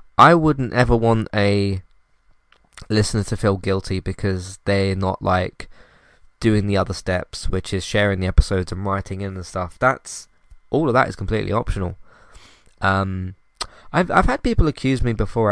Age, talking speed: 20-39, 160 wpm